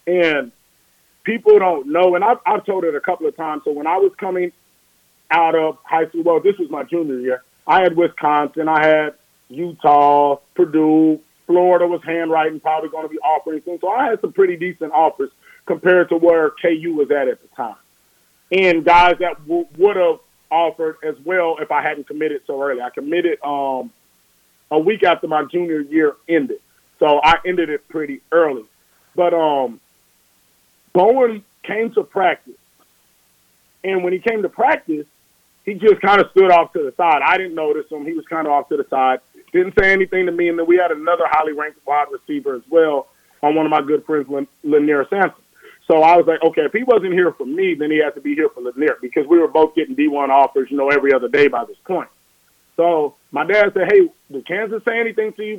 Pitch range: 150-215 Hz